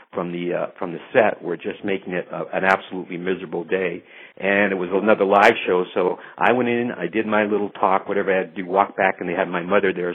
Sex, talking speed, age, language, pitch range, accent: male, 255 wpm, 60-79, English, 95-120 Hz, American